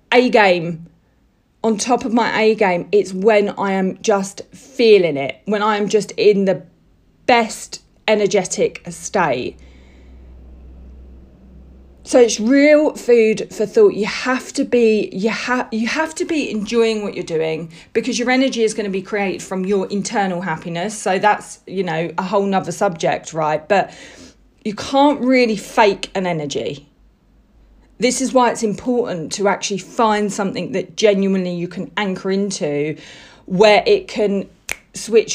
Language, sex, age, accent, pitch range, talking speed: English, female, 40-59, British, 185-230 Hz, 155 wpm